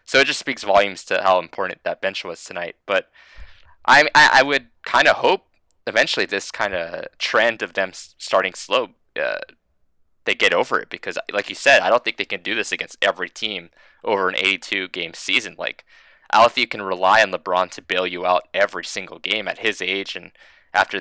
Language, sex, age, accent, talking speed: English, male, 20-39, American, 210 wpm